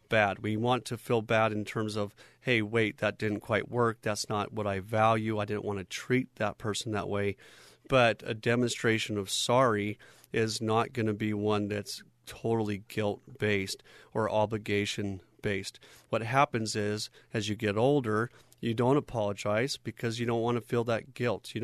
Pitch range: 105-125 Hz